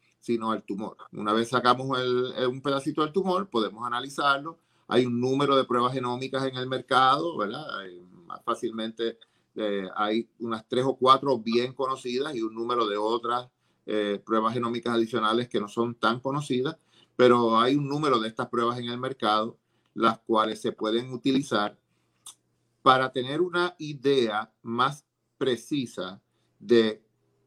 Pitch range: 110-130 Hz